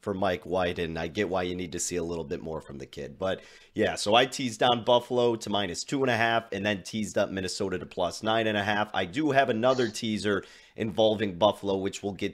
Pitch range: 105-130 Hz